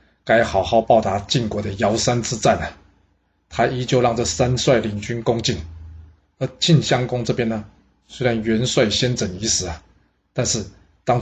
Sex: male